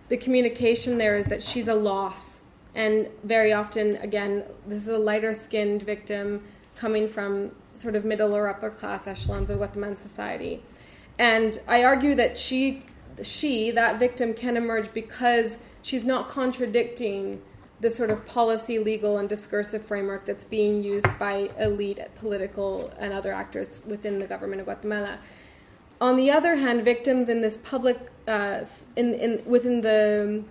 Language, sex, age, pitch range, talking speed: English, female, 20-39, 205-240 Hz, 150 wpm